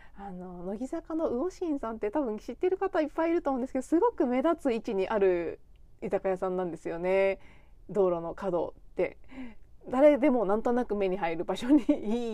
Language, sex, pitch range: Japanese, female, 195-300 Hz